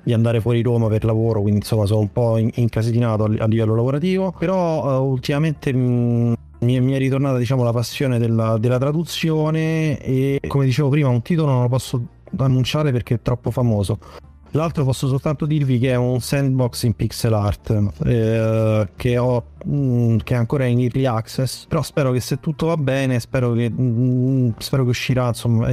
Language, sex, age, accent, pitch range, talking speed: Italian, male, 30-49, native, 115-135 Hz, 170 wpm